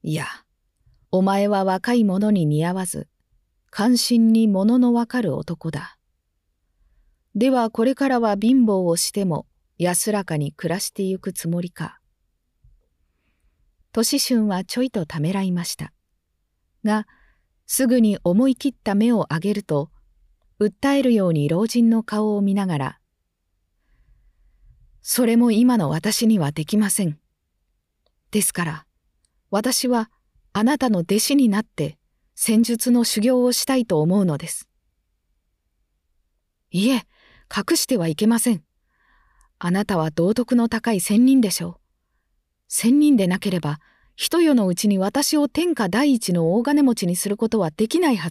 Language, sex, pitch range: Japanese, female, 155-245 Hz